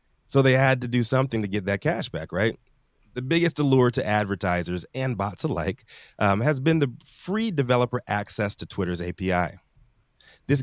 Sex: male